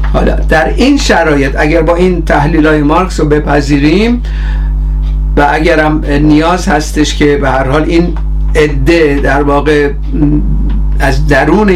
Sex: male